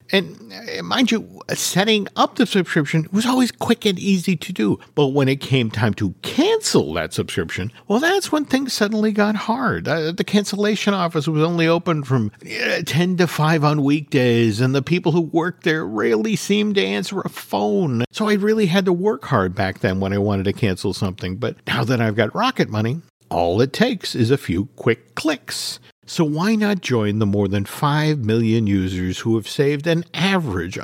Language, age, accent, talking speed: English, 50-69, American, 195 wpm